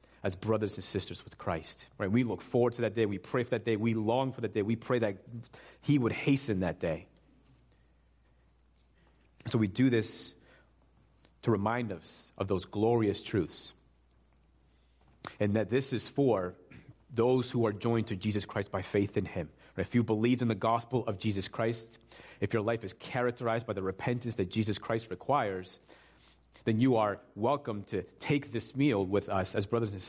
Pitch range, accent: 95-115 Hz, American